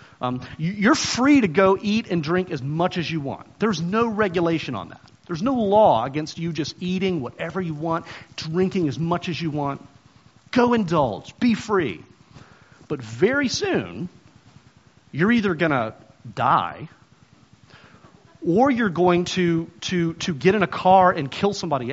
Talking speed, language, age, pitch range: 160 wpm, English, 40-59, 140-225 Hz